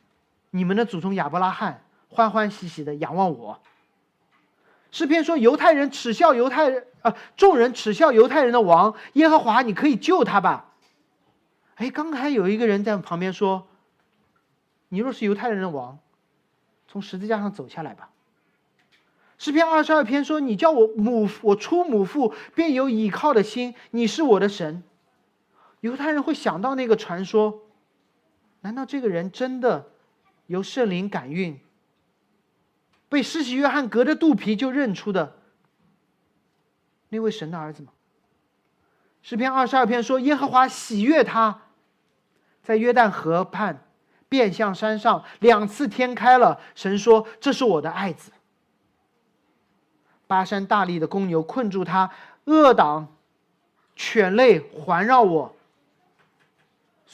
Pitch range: 195-260 Hz